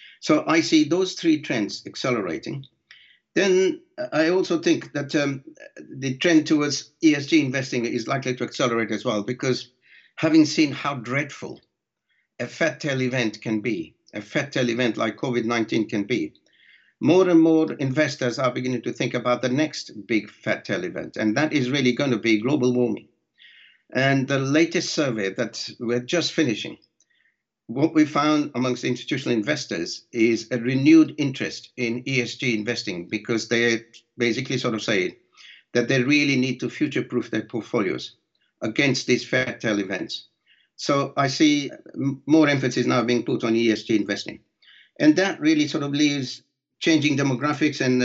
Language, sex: English, male